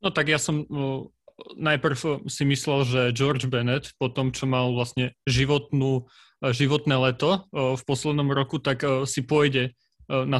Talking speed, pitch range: 145 wpm, 130-150 Hz